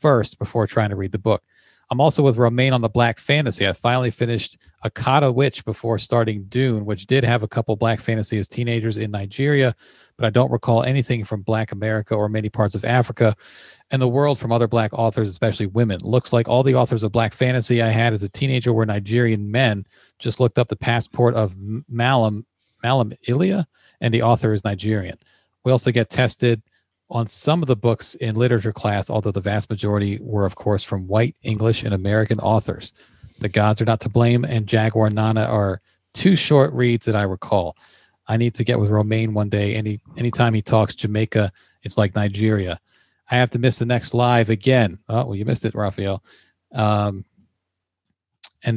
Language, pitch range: English, 105-120 Hz